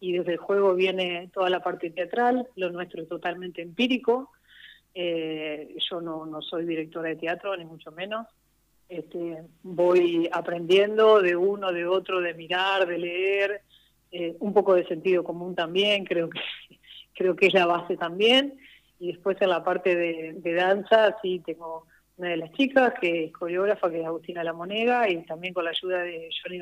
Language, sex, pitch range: Spanish, female, 170-215 Hz